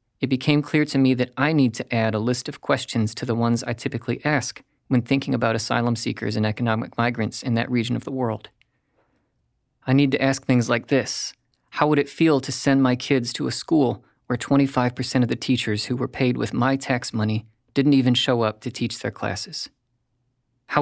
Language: English